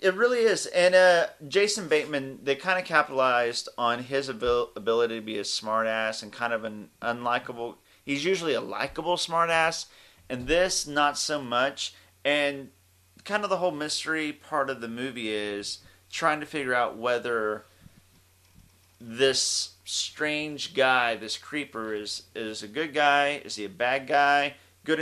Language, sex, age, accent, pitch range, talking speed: English, male, 30-49, American, 110-145 Hz, 155 wpm